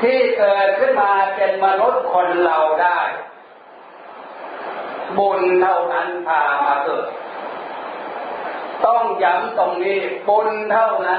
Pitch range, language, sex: 170-215 Hz, Thai, male